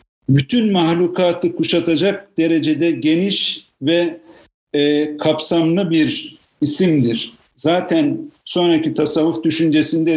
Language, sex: Turkish, male